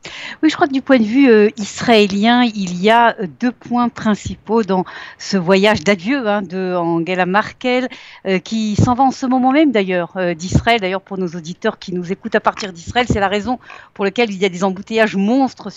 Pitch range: 190-245 Hz